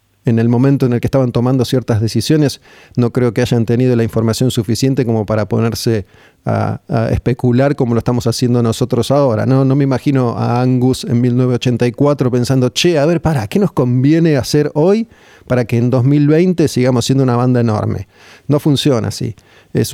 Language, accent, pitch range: Spanish, Argentinian, 115-140 Hz